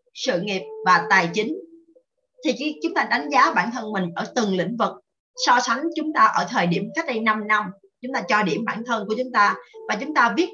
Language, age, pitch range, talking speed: Vietnamese, 20-39, 205-300 Hz, 235 wpm